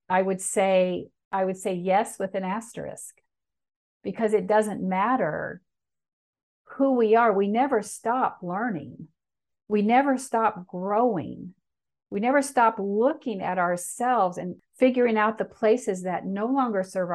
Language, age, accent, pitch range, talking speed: English, 50-69, American, 185-235 Hz, 140 wpm